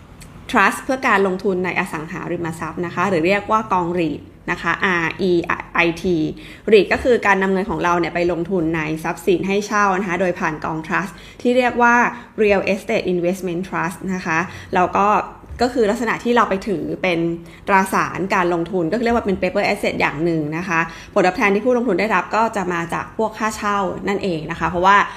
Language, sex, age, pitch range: Thai, female, 20-39, 175-210 Hz